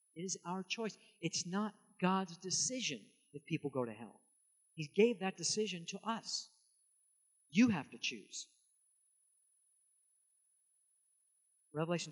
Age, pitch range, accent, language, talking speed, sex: 50-69, 125-200 Hz, American, English, 120 wpm, male